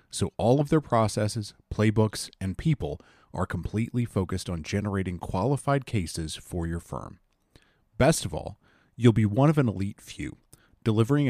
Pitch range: 95-130 Hz